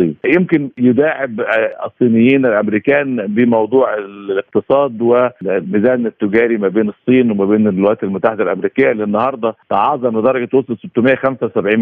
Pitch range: 105-130 Hz